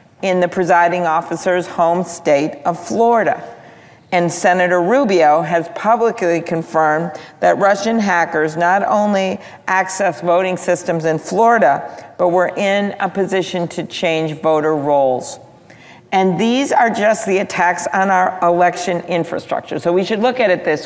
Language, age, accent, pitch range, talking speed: English, 50-69, American, 165-195 Hz, 145 wpm